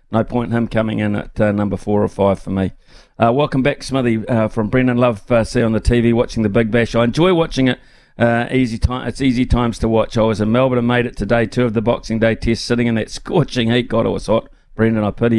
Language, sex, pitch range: English, male, 105-125 Hz